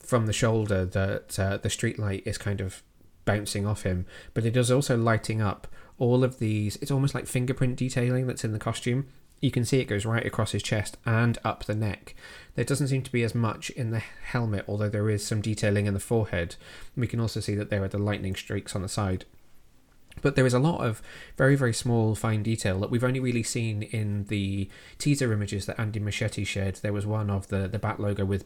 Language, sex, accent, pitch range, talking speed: English, male, British, 100-120 Hz, 230 wpm